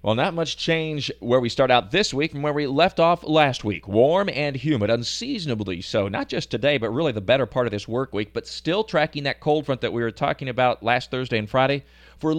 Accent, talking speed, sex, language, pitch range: American, 240 wpm, male, English, 105-140 Hz